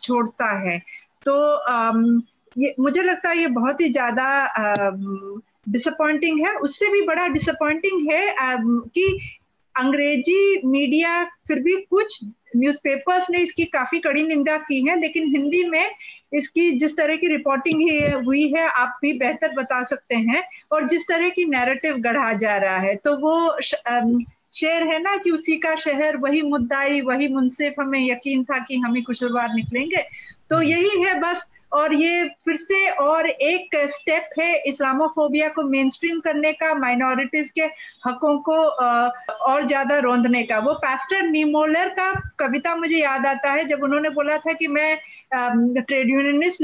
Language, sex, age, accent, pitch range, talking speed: Hindi, female, 50-69, native, 260-320 Hz, 160 wpm